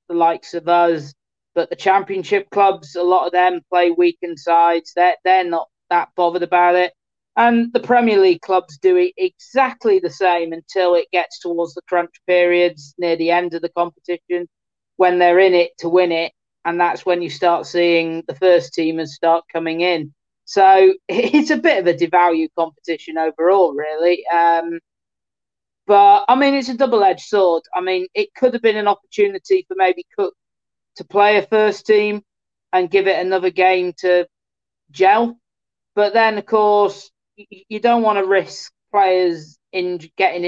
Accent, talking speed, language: British, 175 wpm, English